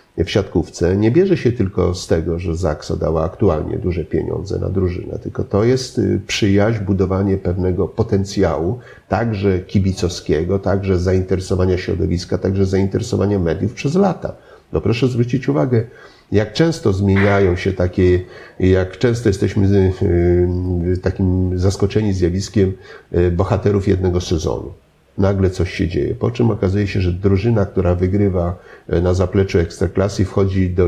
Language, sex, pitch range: Polish, male, 95-110 Hz